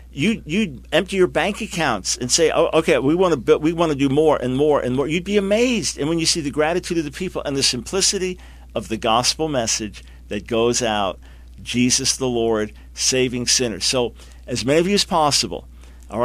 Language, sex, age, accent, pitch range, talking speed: English, male, 50-69, American, 120-160 Hz, 195 wpm